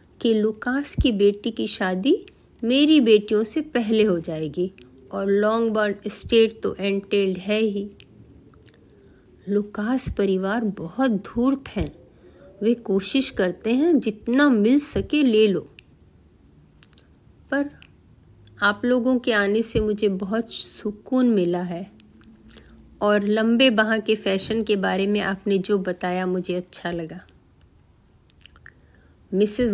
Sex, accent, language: female, native, Hindi